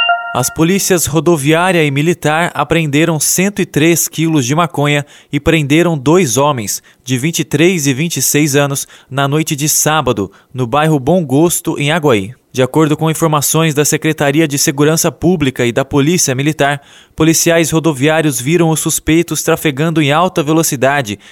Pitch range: 145-170 Hz